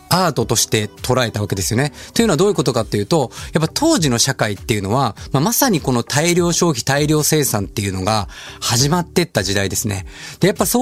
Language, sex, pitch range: Japanese, male, 110-185 Hz